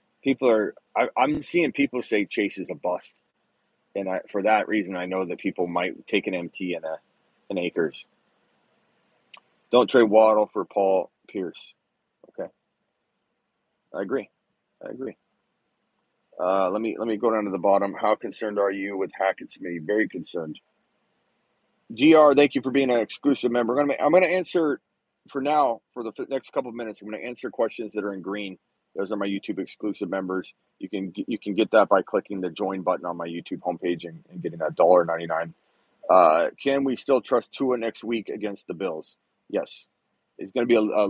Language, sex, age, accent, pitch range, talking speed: English, male, 30-49, American, 95-125 Hz, 190 wpm